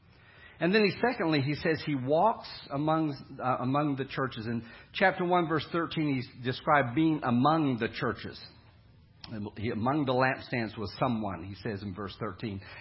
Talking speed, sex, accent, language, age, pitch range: 165 wpm, male, American, English, 50-69, 115-160 Hz